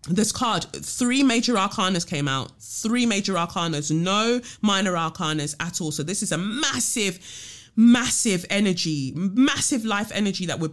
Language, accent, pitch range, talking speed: English, British, 150-205 Hz, 150 wpm